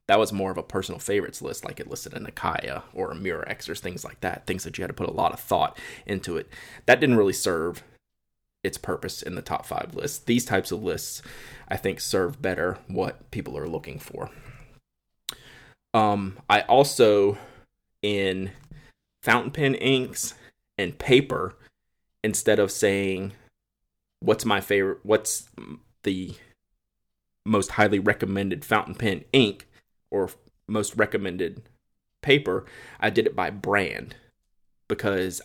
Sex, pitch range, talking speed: male, 95-115 Hz, 150 wpm